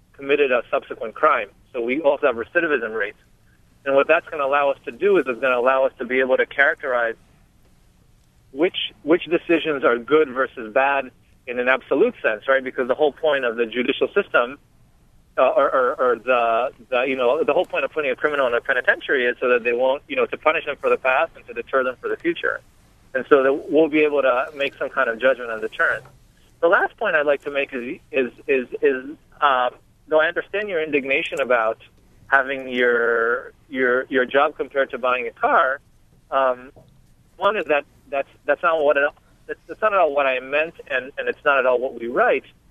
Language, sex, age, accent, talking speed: English, male, 40-59, American, 220 wpm